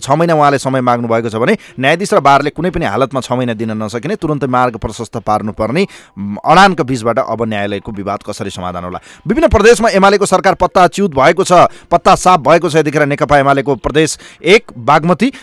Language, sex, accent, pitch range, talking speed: English, male, Indian, 125-180 Hz, 175 wpm